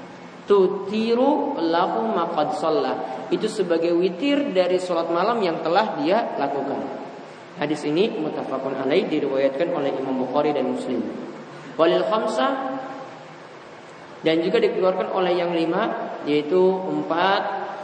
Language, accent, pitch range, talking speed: English, Indonesian, 150-190 Hz, 100 wpm